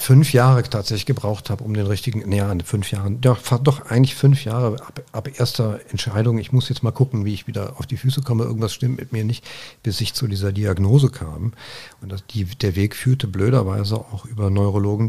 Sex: male